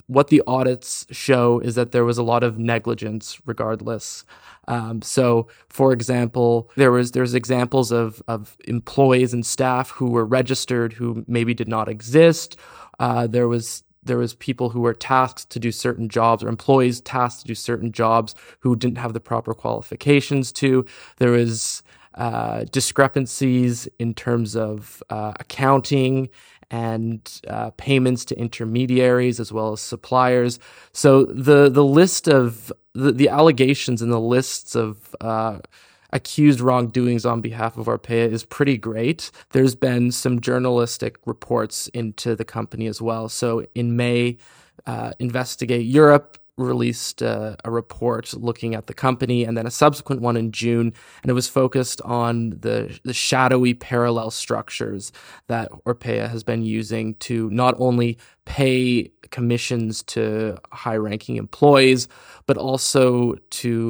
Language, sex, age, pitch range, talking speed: English, male, 20-39, 115-130 Hz, 150 wpm